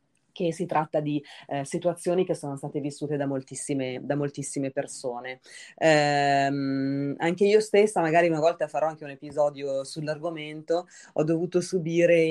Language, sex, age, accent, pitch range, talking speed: Italian, female, 30-49, native, 145-175 Hz, 140 wpm